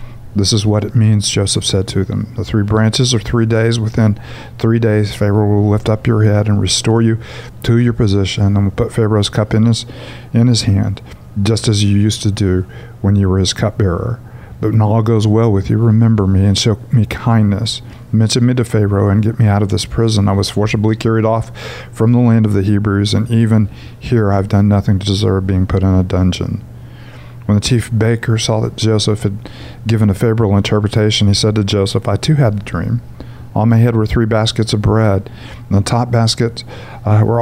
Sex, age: male, 50-69